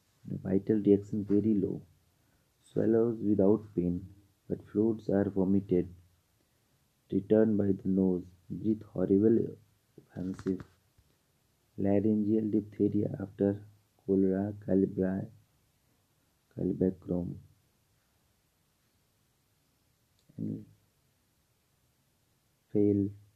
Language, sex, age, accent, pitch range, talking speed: English, male, 50-69, Indian, 95-110 Hz, 65 wpm